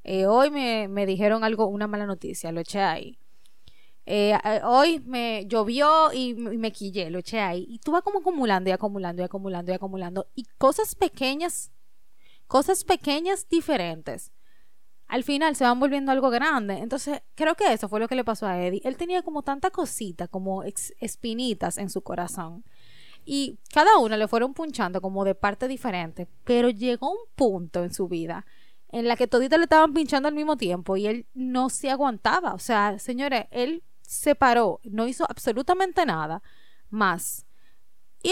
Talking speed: 180 wpm